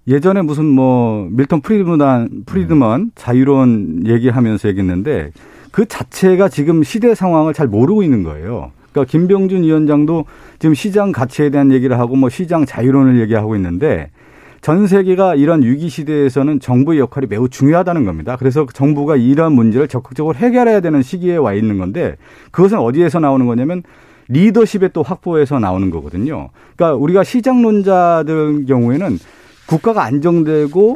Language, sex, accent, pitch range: Korean, male, native, 130-185 Hz